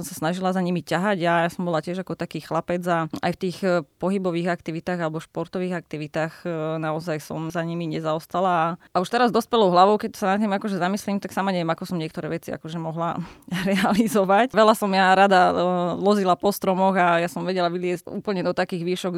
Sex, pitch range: female, 170-185 Hz